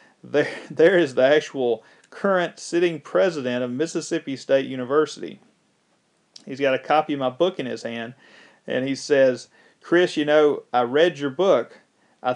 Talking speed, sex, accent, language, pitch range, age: 160 wpm, male, American, English, 130-155 Hz, 40-59